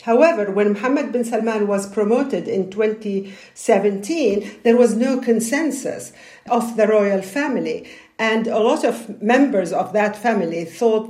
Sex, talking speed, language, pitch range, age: female, 140 wpm, English, 205-245 Hz, 50-69